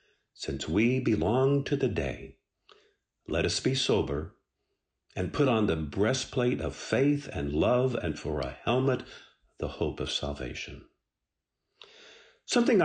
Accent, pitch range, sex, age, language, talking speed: American, 85-130 Hz, male, 50-69, English, 130 wpm